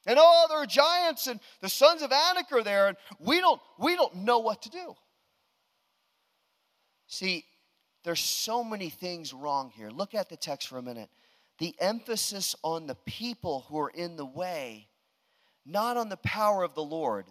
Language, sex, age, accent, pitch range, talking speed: English, male, 40-59, American, 160-235 Hz, 180 wpm